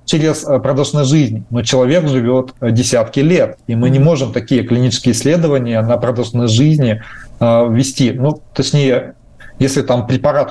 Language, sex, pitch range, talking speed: Russian, male, 120-140 Hz, 135 wpm